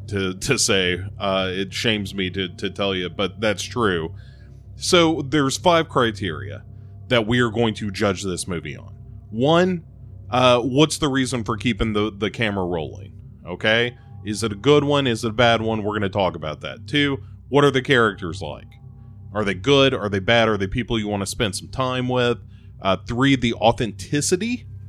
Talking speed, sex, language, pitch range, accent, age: 195 wpm, male, English, 100-125 Hz, American, 30-49